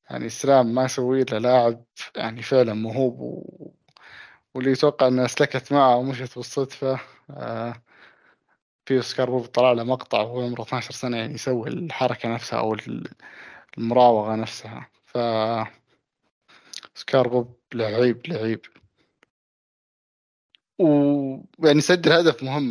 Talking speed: 100 wpm